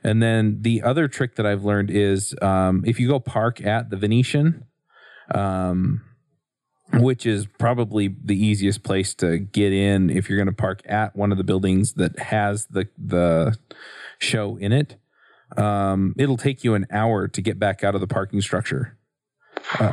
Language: English